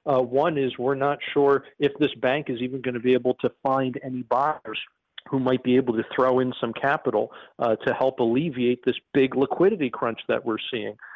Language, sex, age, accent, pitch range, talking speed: English, male, 40-59, American, 125-160 Hz, 210 wpm